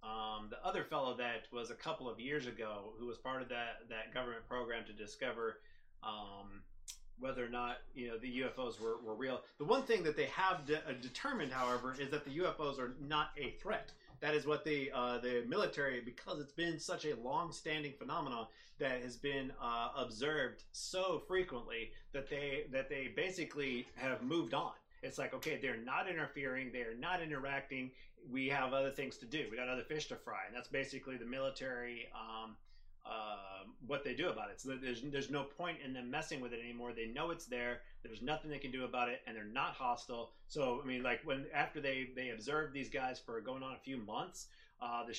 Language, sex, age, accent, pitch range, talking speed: English, male, 30-49, American, 120-145 Hz, 210 wpm